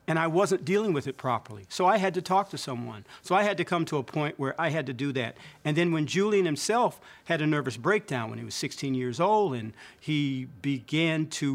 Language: English